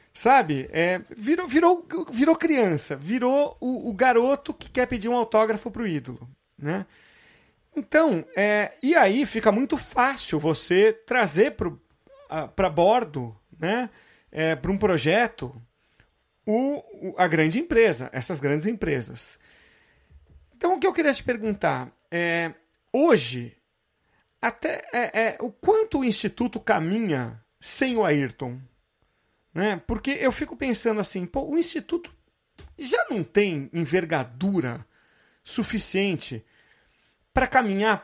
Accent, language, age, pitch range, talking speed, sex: Brazilian, Portuguese, 40-59, 150-250 Hz, 105 wpm, male